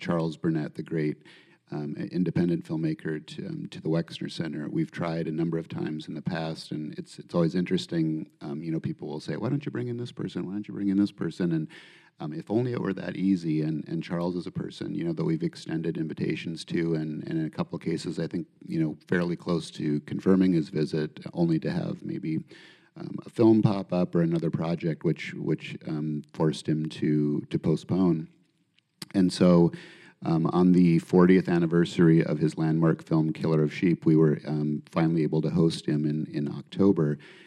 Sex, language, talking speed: male, English, 210 wpm